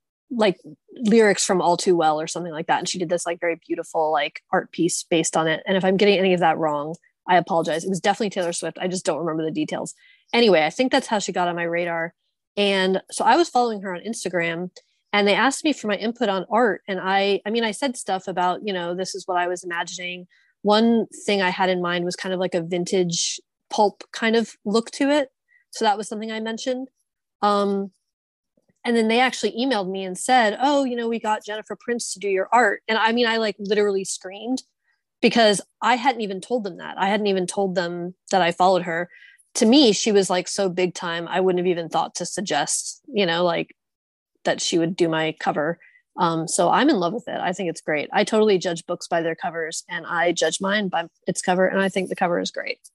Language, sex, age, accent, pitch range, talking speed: English, female, 20-39, American, 175-225 Hz, 240 wpm